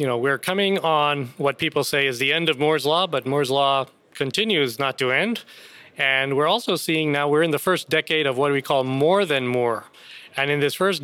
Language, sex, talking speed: English, male, 230 wpm